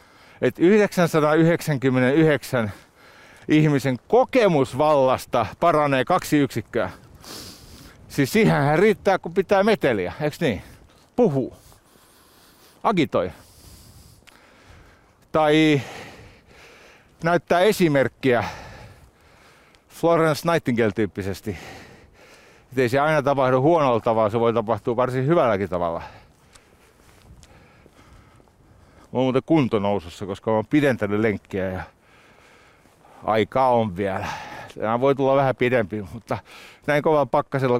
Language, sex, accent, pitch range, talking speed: Finnish, male, native, 105-150 Hz, 90 wpm